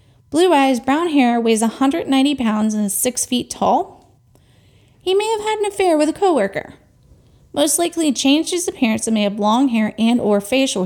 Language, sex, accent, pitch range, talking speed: English, female, American, 205-285 Hz, 190 wpm